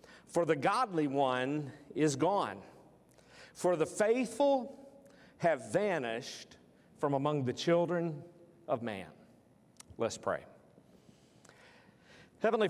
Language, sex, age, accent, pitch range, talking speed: English, male, 50-69, American, 140-175 Hz, 95 wpm